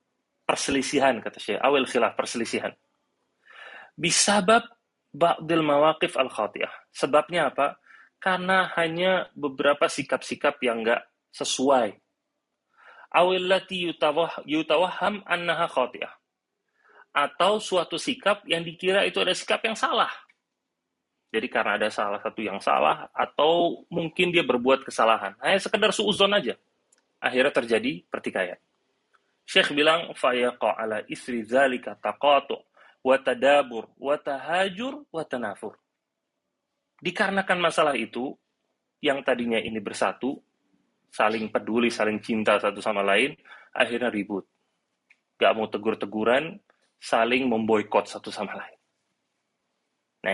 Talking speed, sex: 100 wpm, male